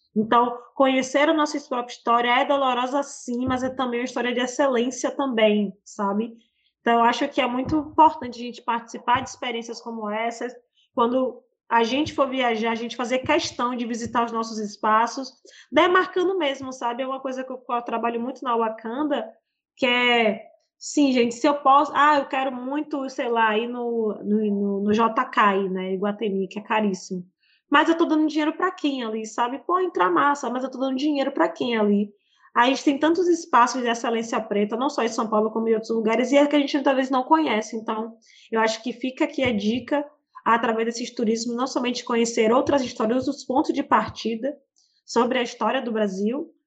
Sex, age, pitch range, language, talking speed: female, 20-39, 225-270 Hz, Portuguese, 195 wpm